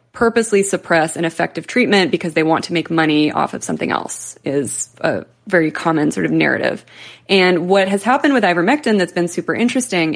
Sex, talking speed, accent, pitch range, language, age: female, 190 wpm, American, 160-195 Hz, English, 20-39